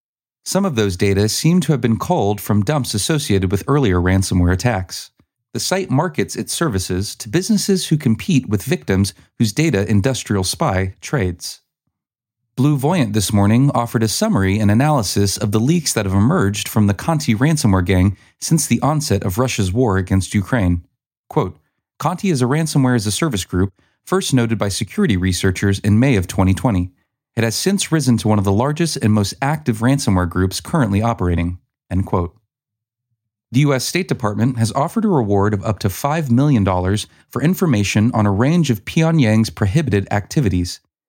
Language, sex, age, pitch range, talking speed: English, male, 30-49, 100-140 Hz, 170 wpm